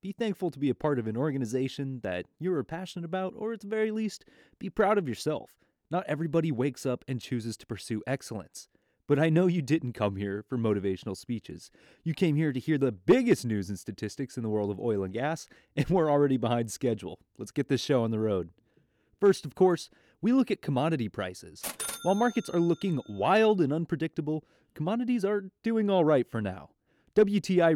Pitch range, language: 110-175 Hz, English